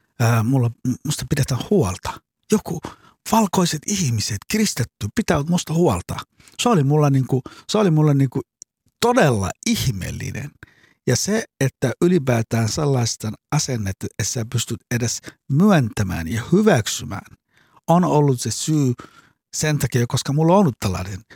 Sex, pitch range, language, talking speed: male, 100-140 Hz, Finnish, 120 wpm